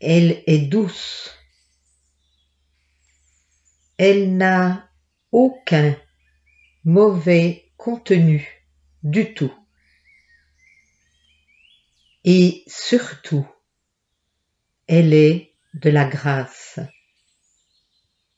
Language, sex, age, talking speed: French, female, 50-69, 55 wpm